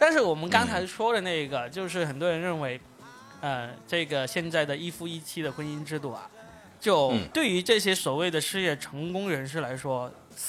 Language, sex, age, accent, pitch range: Chinese, male, 20-39, native, 140-180 Hz